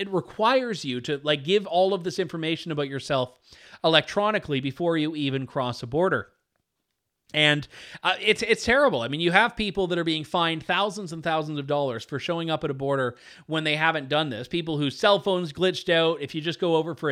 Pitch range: 145-185 Hz